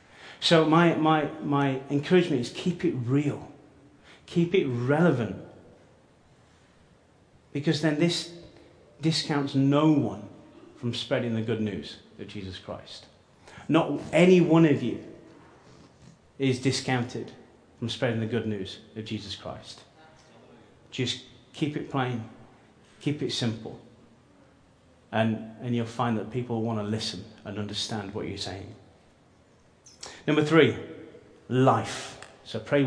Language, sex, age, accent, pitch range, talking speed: English, male, 30-49, British, 115-155 Hz, 120 wpm